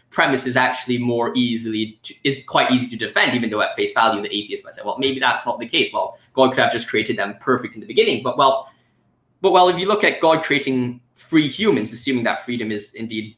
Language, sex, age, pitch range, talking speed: English, male, 10-29, 120-165 Hz, 240 wpm